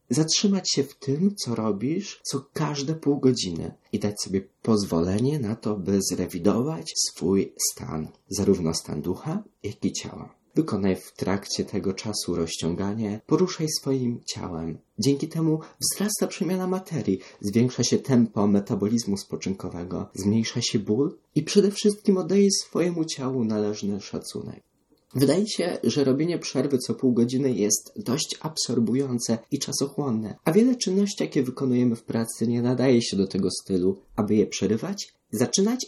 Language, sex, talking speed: Polish, male, 145 wpm